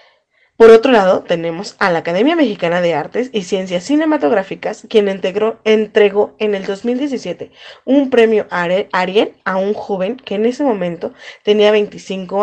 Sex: female